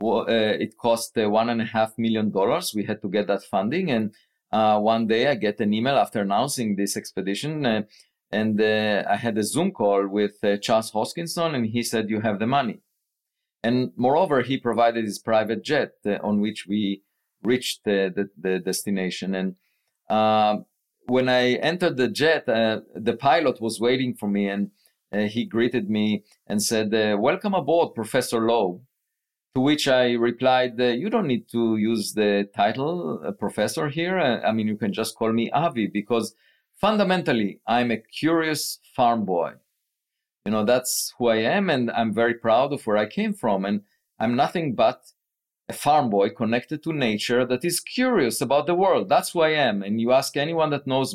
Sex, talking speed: male, 185 wpm